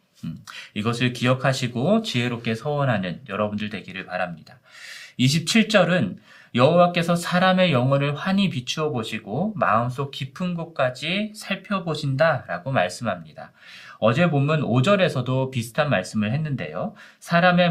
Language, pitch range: Korean, 120-175 Hz